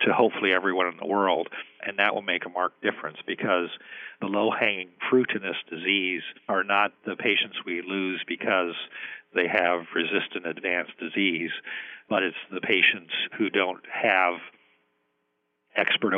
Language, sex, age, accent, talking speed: English, male, 50-69, American, 150 wpm